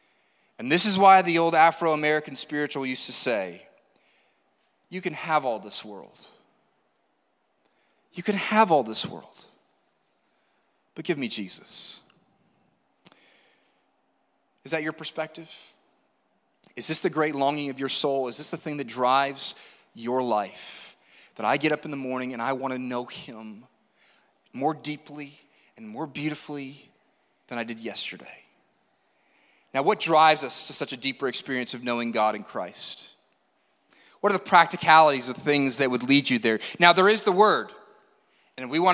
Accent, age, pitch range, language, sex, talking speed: American, 30-49, 135-165 Hz, English, male, 155 wpm